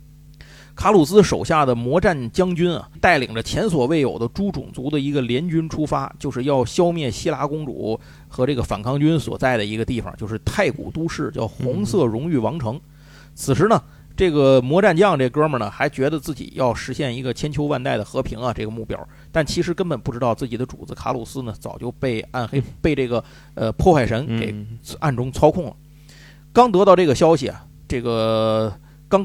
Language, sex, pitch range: Chinese, male, 115-155 Hz